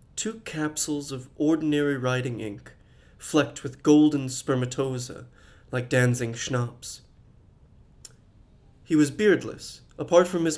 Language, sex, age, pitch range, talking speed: English, male, 30-49, 125-155 Hz, 110 wpm